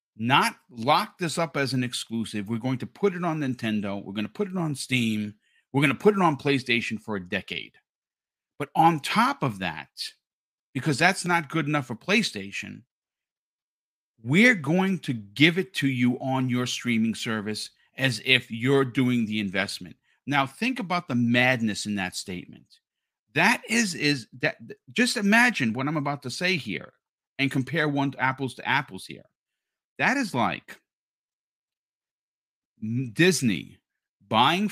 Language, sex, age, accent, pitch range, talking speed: English, male, 50-69, American, 110-155 Hz, 160 wpm